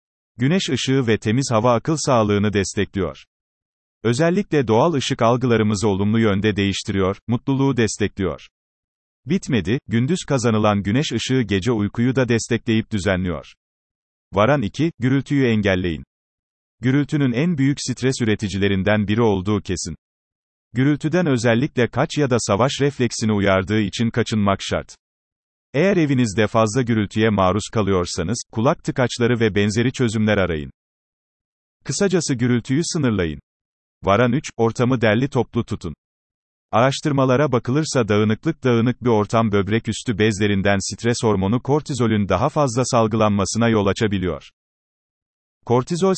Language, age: Turkish, 40-59